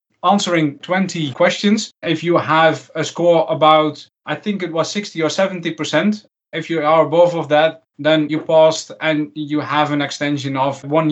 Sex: male